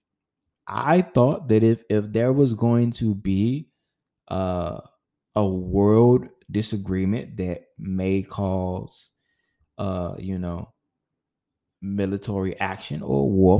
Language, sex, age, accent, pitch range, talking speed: English, male, 20-39, American, 95-120 Hz, 105 wpm